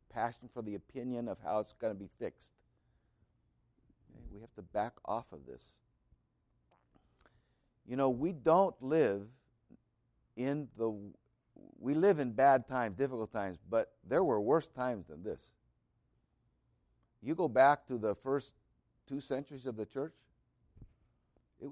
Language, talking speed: English, 140 wpm